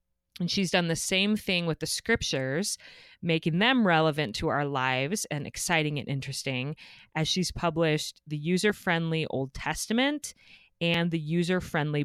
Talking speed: 145 wpm